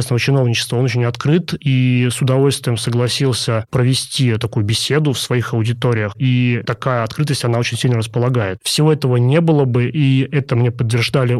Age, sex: 30-49, male